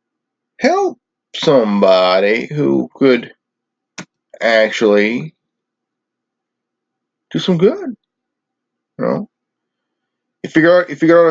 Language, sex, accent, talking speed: English, male, American, 90 wpm